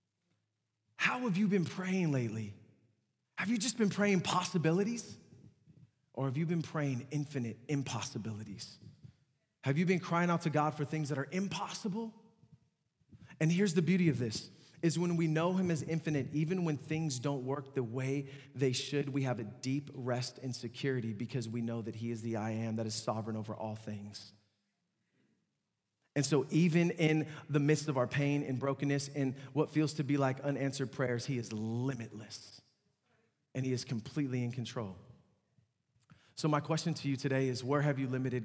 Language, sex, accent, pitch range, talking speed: English, male, American, 125-155 Hz, 180 wpm